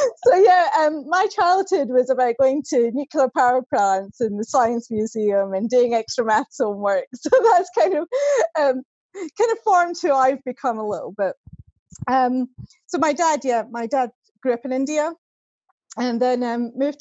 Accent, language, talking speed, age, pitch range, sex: British, English, 175 wpm, 30-49, 230-280 Hz, female